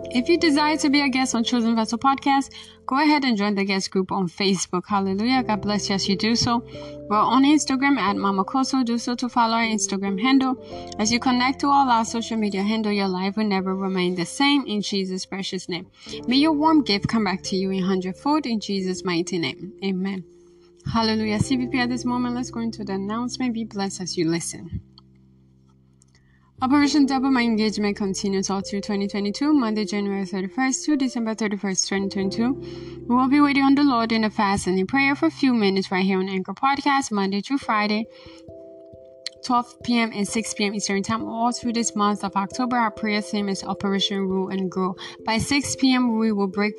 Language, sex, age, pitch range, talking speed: English, female, 20-39, 190-245 Hz, 200 wpm